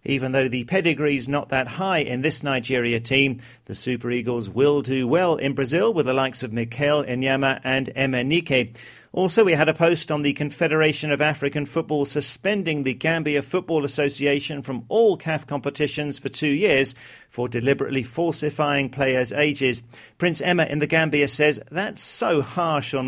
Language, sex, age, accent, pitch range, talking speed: English, male, 40-59, British, 130-155 Hz, 170 wpm